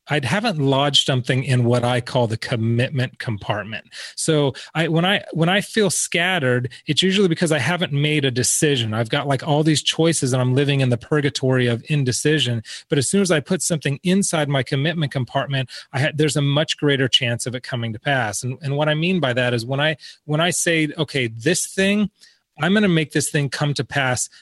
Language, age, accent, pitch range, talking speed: English, 30-49, American, 130-165 Hz, 220 wpm